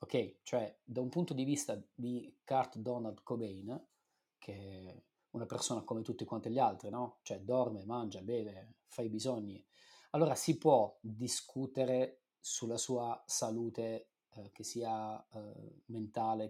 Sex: male